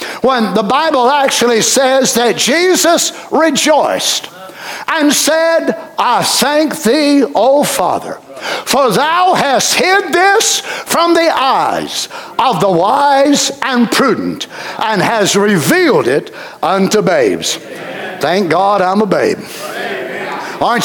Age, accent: 60-79, American